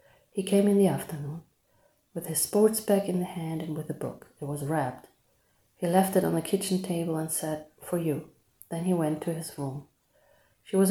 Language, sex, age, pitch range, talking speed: English, female, 30-49, 155-180 Hz, 210 wpm